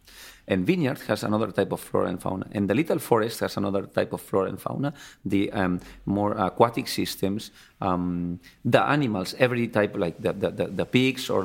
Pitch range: 100-130 Hz